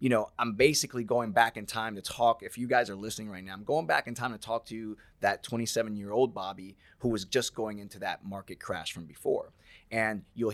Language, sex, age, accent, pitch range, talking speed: English, male, 20-39, American, 100-120 Hz, 240 wpm